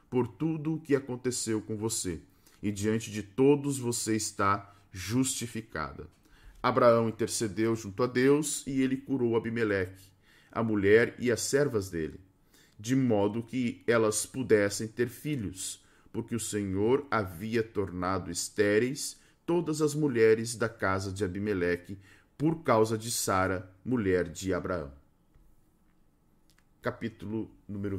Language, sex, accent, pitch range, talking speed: Portuguese, male, Brazilian, 100-130 Hz, 120 wpm